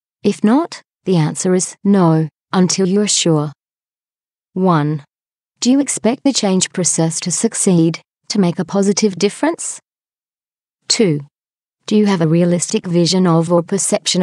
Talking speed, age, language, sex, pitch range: 140 wpm, 30-49, English, female, 165-200 Hz